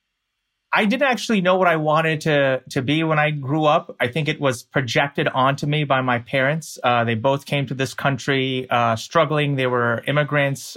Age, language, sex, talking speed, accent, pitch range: 30-49, English, male, 200 wpm, American, 130-180 Hz